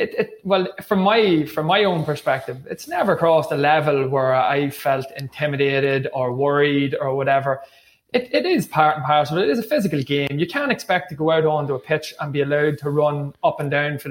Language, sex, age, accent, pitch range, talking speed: English, male, 20-39, Irish, 135-155 Hz, 215 wpm